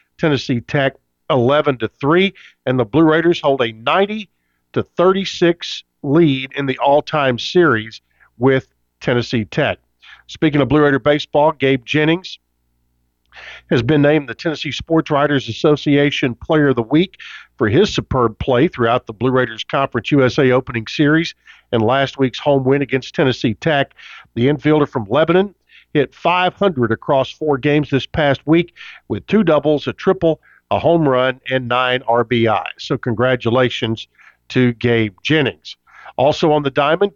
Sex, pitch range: male, 125-160 Hz